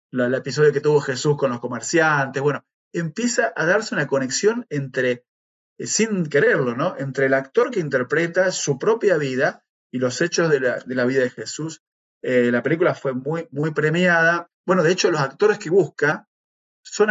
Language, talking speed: Spanish, 180 wpm